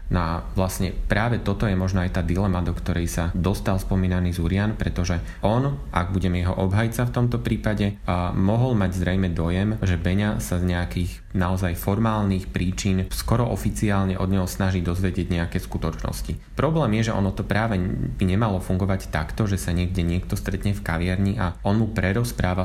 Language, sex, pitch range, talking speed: Slovak, male, 90-100 Hz, 175 wpm